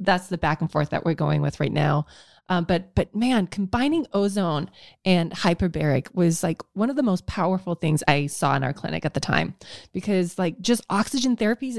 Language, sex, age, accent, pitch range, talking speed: English, female, 20-39, American, 155-200 Hz, 205 wpm